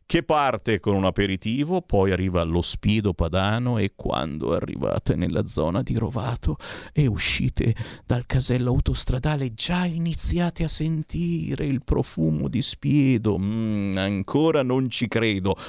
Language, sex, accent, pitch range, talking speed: Italian, male, native, 105-175 Hz, 135 wpm